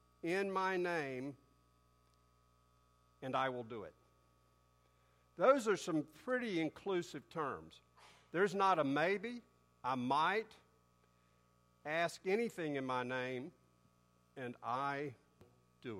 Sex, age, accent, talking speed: male, 50-69, American, 105 wpm